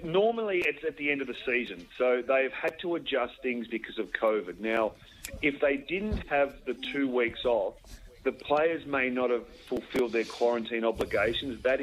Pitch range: 115-145 Hz